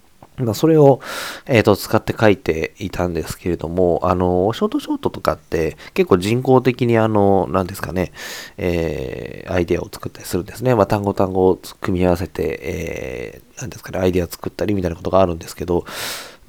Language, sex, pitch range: Japanese, male, 90-125 Hz